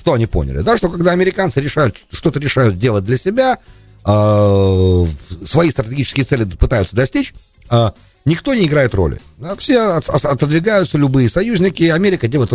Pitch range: 95-145 Hz